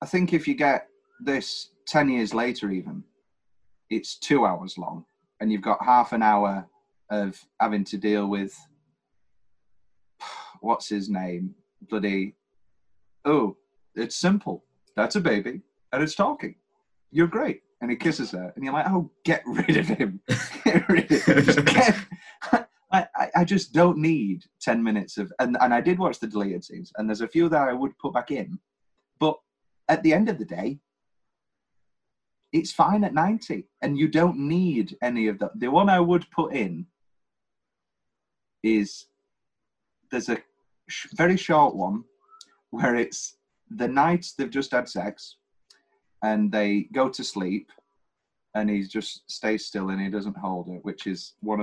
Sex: male